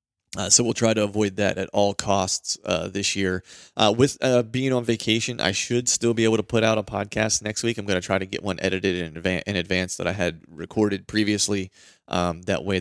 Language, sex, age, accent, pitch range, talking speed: English, male, 30-49, American, 95-110 Hz, 240 wpm